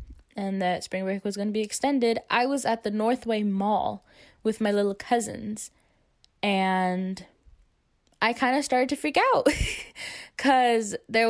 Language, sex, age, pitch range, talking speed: English, female, 10-29, 200-245 Hz, 155 wpm